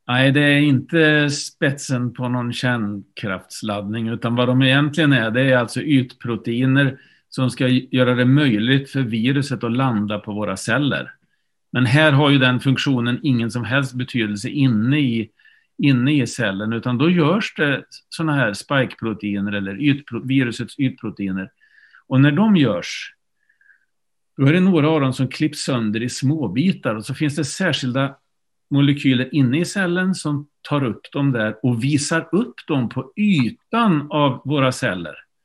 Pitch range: 125-155 Hz